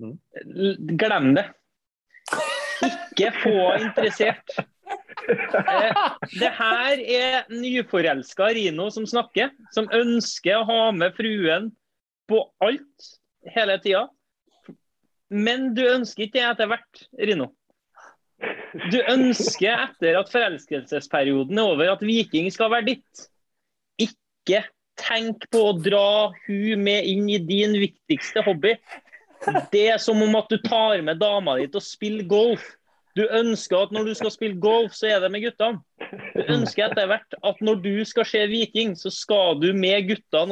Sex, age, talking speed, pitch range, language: male, 30-49, 145 wpm, 190-225 Hz, English